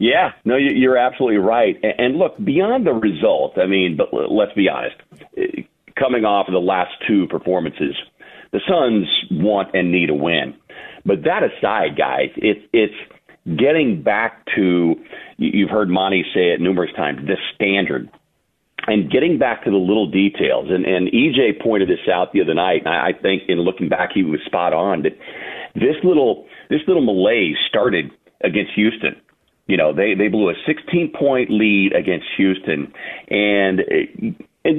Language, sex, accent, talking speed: English, male, American, 160 wpm